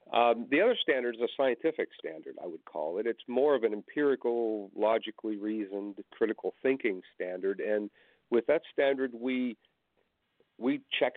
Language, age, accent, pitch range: English, 50-69, American, 105-175 Hz